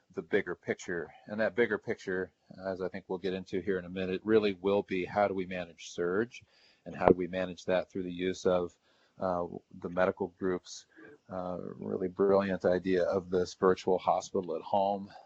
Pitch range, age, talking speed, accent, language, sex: 85-95 Hz, 40-59, 195 wpm, American, English, male